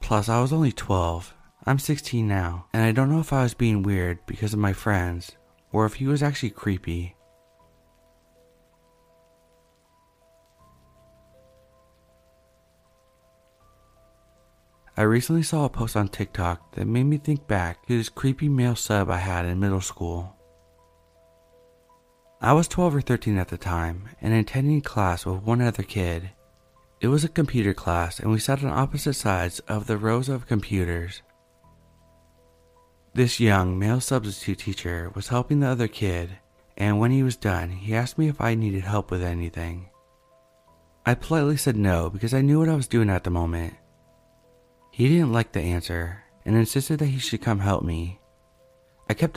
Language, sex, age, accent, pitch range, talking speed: English, male, 30-49, American, 85-130 Hz, 160 wpm